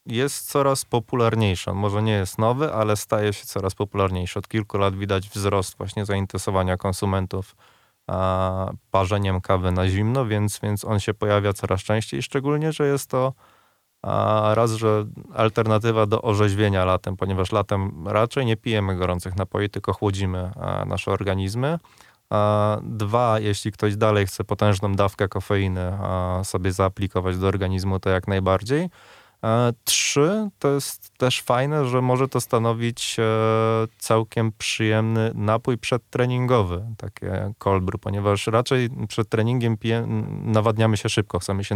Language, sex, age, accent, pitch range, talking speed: Polish, male, 20-39, native, 95-115 Hz, 135 wpm